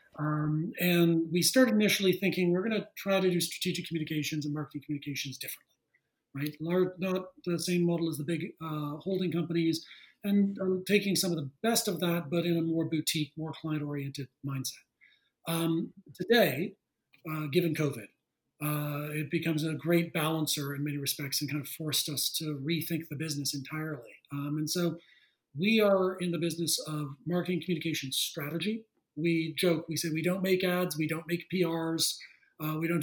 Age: 40-59